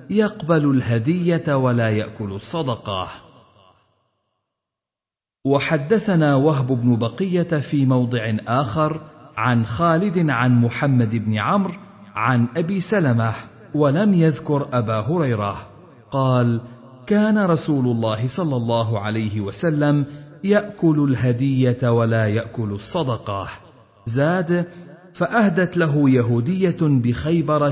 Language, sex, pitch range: Arabic, male, 110-160 Hz